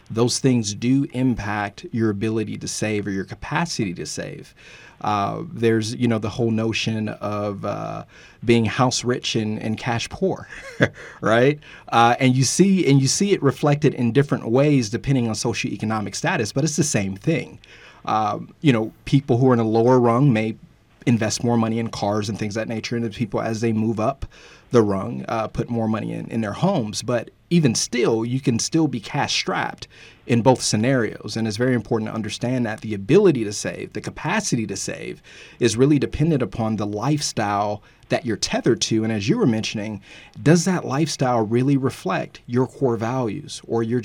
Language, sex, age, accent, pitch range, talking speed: English, male, 30-49, American, 110-130 Hz, 190 wpm